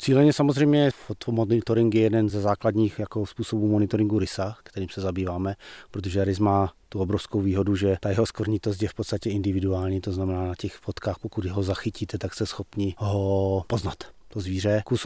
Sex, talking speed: male, 175 wpm